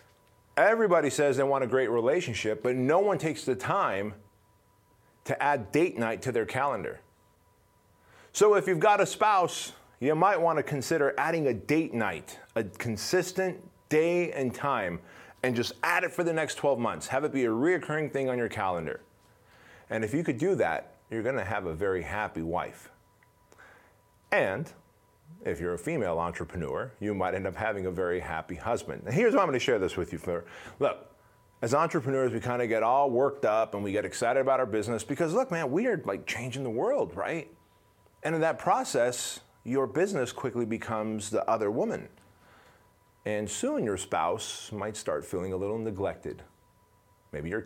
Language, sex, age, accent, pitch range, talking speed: English, male, 30-49, American, 100-145 Hz, 185 wpm